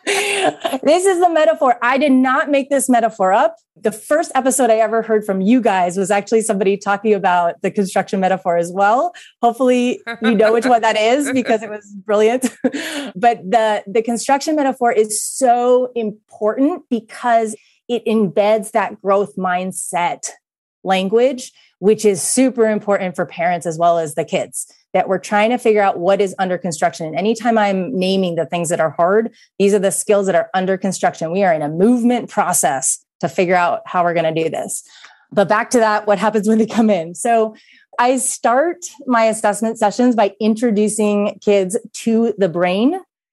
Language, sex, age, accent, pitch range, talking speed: English, female, 30-49, American, 195-245 Hz, 180 wpm